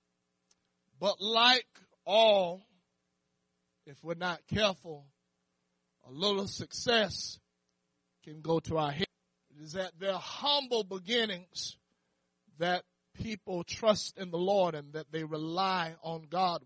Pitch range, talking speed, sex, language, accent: 140-215 Hz, 120 wpm, male, English, American